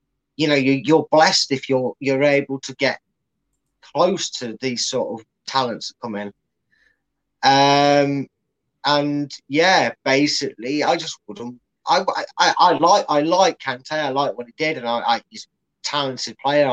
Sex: male